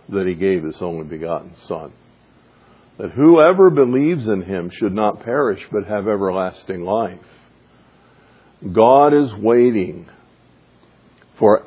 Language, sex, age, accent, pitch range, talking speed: English, male, 50-69, American, 95-125 Hz, 120 wpm